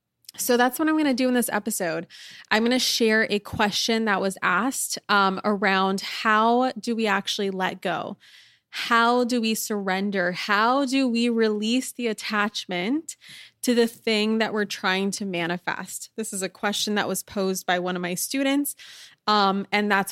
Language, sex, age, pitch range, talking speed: English, female, 20-39, 190-230 Hz, 180 wpm